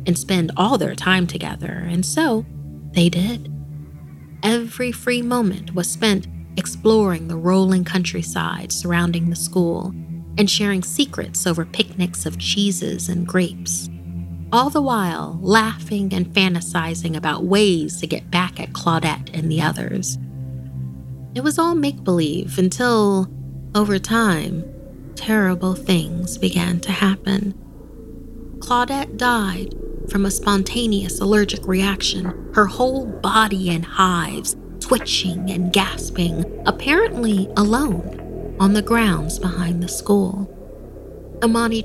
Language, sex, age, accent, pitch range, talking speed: English, female, 30-49, American, 165-205 Hz, 120 wpm